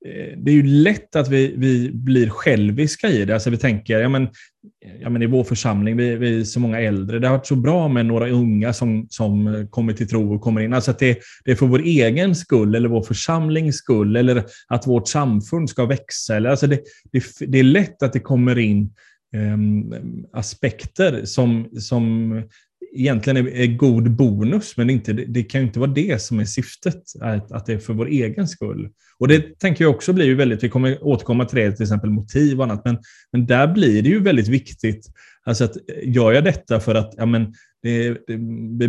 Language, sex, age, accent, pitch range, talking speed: Swedish, male, 20-39, native, 110-135 Hz, 215 wpm